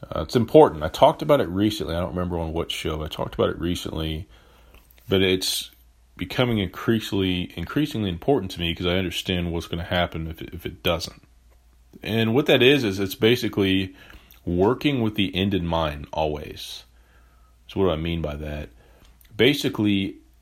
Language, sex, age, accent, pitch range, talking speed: English, male, 30-49, American, 80-95 Hz, 180 wpm